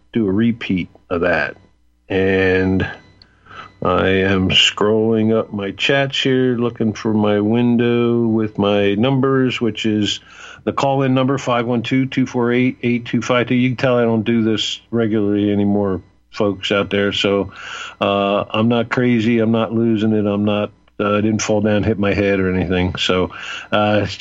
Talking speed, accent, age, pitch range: 155 wpm, American, 50-69, 100-125 Hz